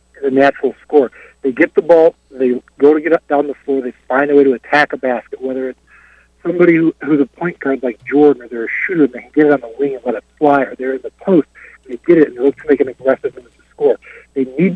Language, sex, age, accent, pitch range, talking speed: English, male, 60-79, American, 135-180 Hz, 275 wpm